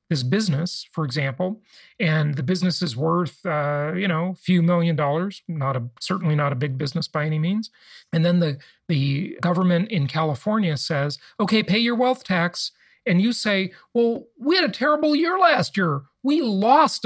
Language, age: English, 40-59